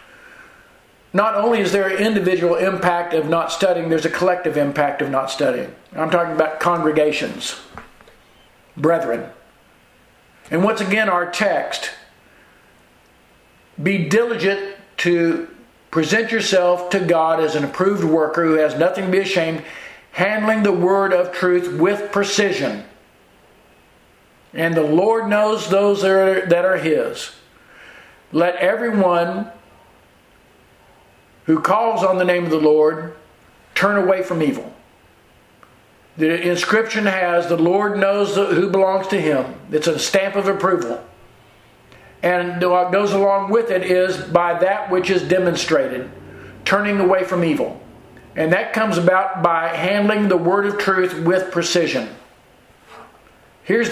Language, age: English, 50-69